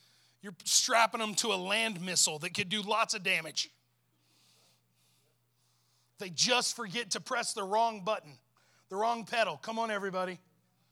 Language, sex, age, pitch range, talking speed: English, male, 30-49, 185-270 Hz, 150 wpm